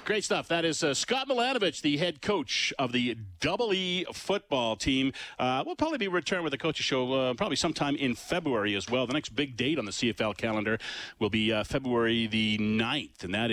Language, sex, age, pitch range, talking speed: English, male, 40-59, 105-145 Hz, 215 wpm